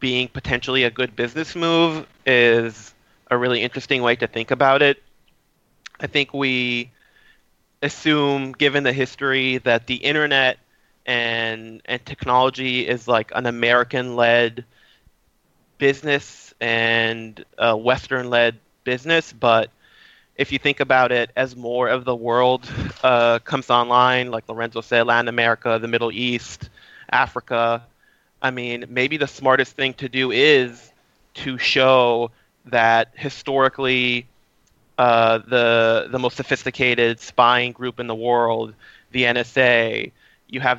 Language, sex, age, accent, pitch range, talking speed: English, male, 20-39, American, 120-130 Hz, 130 wpm